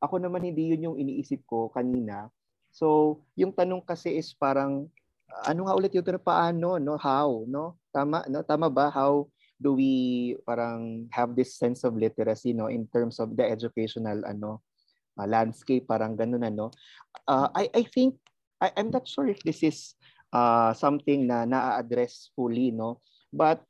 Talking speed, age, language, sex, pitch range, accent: 165 wpm, 20-39, Filipino, male, 120-165 Hz, native